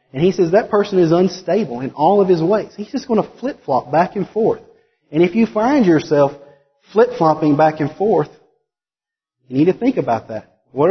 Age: 30-49